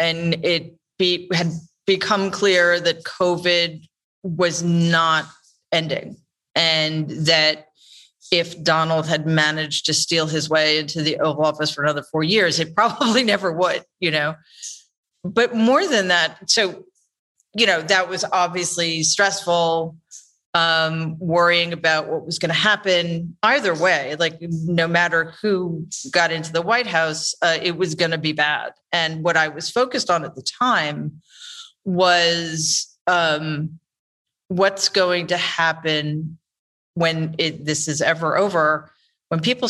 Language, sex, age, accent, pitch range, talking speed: English, female, 40-59, American, 160-185 Hz, 140 wpm